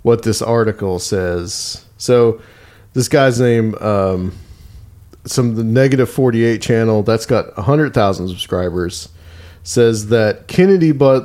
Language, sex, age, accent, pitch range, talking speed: English, male, 40-59, American, 105-125 Hz, 135 wpm